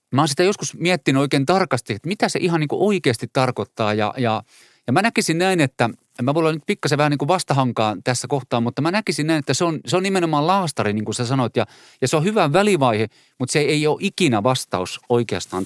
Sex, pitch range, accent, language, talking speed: male, 125-170 Hz, native, Finnish, 235 wpm